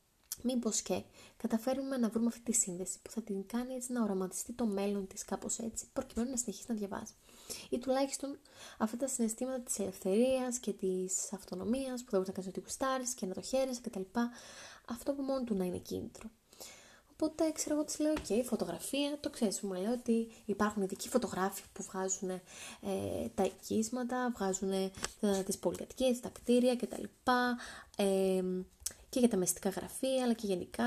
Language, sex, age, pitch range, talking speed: Greek, female, 20-39, 185-240 Hz, 175 wpm